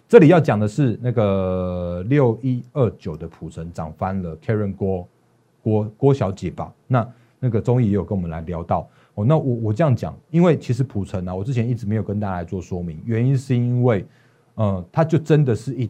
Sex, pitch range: male, 100-130 Hz